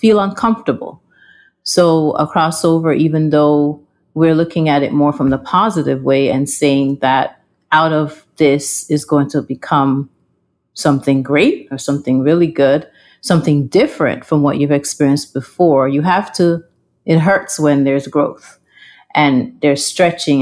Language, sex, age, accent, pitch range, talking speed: English, female, 40-59, American, 140-165 Hz, 145 wpm